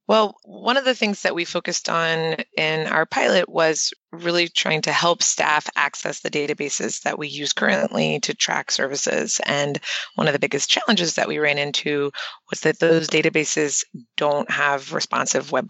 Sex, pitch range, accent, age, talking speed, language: female, 145-185 Hz, American, 20-39, 175 wpm, English